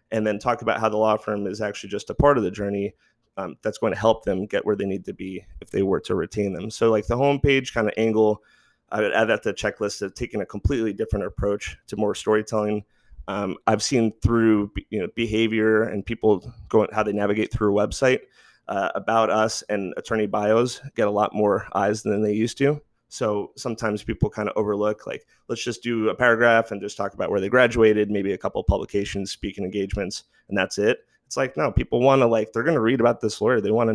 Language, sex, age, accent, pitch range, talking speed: English, male, 30-49, American, 100-115 Hz, 235 wpm